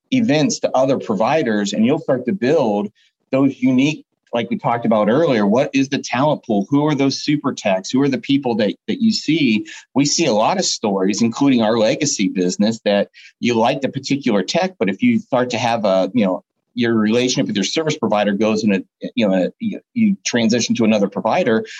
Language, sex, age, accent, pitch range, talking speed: English, male, 40-59, American, 110-150 Hz, 210 wpm